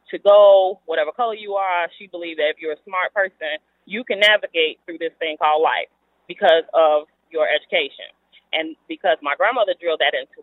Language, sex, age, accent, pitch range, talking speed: English, female, 30-49, American, 155-230 Hz, 190 wpm